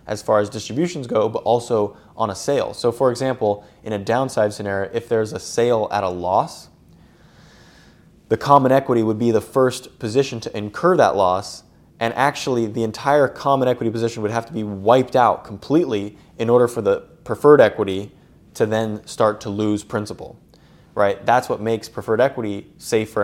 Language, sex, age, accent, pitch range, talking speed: English, male, 20-39, American, 100-125 Hz, 180 wpm